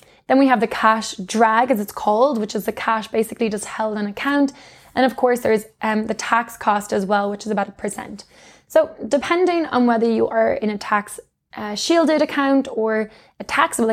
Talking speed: 205 wpm